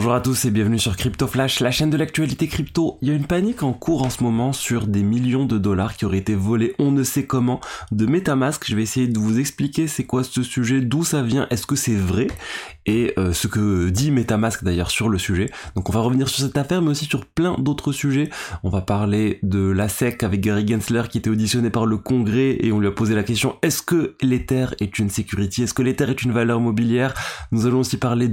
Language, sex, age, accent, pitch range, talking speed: French, male, 20-39, French, 100-130 Hz, 245 wpm